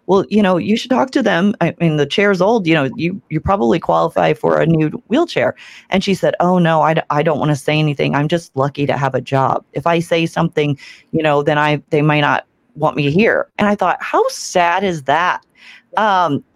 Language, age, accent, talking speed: English, 30-49, American, 235 wpm